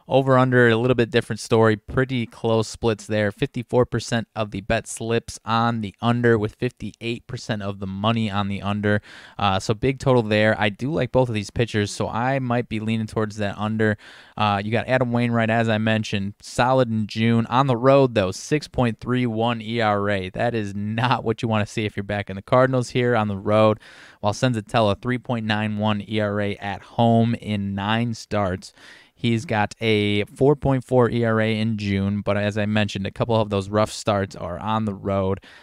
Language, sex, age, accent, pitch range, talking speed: English, male, 20-39, American, 105-120 Hz, 185 wpm